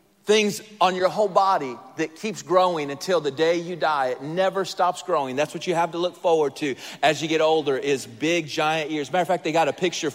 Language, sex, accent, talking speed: English, male, American, 235 wpm